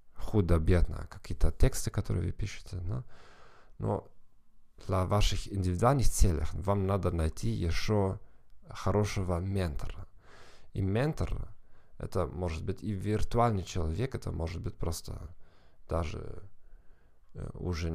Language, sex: Russian, male